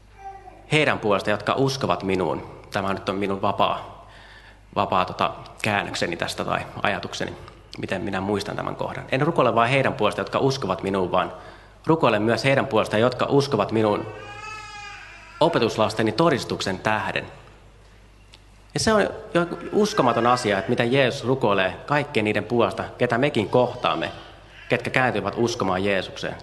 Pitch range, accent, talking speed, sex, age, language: 100-135 Hz, native, 135 wpm, male, 30-49, Finnish